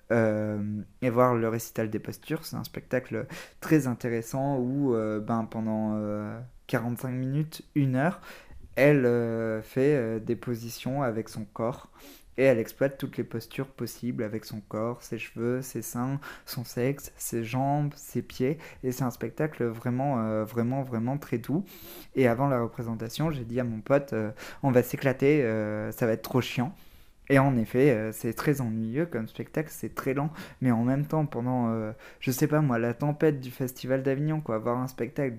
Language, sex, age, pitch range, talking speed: French, male, 20-39, 115-140 Hz, 185 wpm